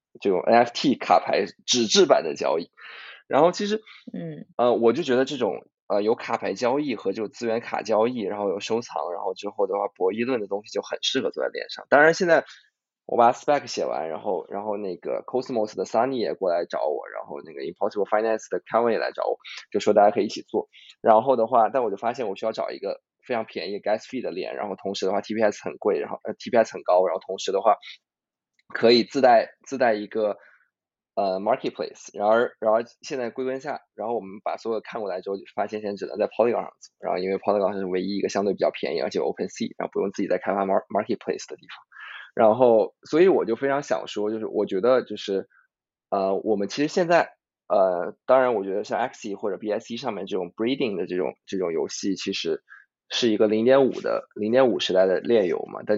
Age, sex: 20-39, male